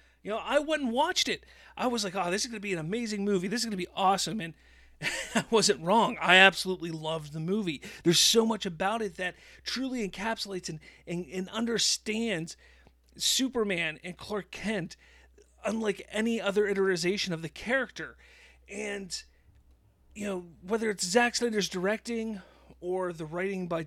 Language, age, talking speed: English, 30-49, 175 wpm